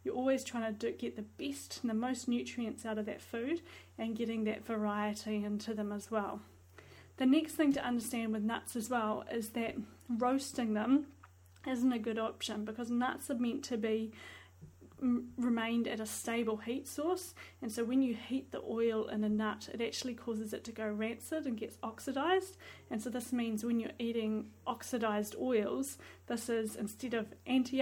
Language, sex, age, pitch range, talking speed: English, female, 30-49, 215-245 Hz, 185 wpm